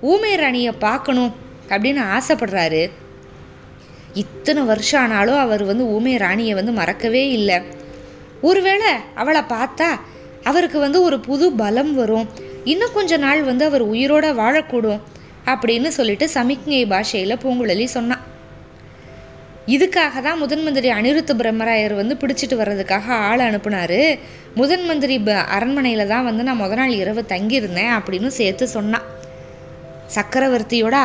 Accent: native